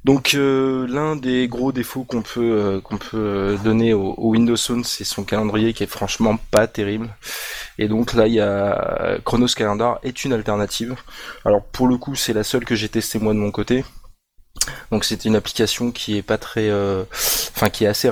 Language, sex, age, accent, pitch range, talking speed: French, male, 20-39, French, 105-115 Hz, 205 wpm